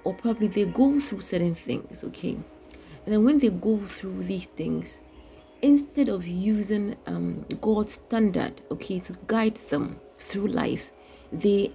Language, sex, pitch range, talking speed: English, female, 175-225 Hz, 150 wpm